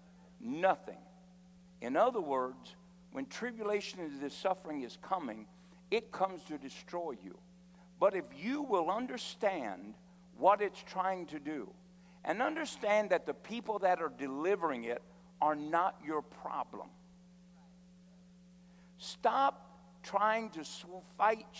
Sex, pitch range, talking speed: male, 175-215 Hz, 120 wpm